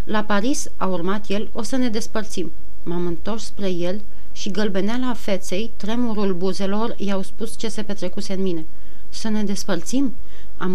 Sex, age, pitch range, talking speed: female, 30-49, 180-215 Hz, 165 wpm